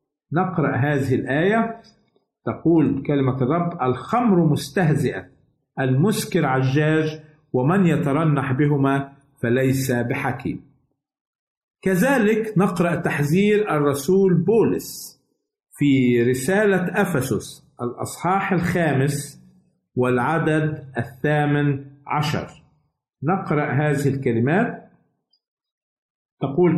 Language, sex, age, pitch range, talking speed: Arabic, male, 50-69, 130-165 Hz, 70 wpm